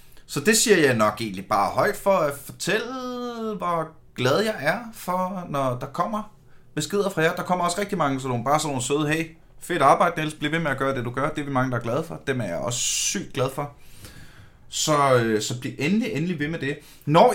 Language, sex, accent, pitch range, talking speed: Danish, male, native, 135-180 Hz, 240 wpm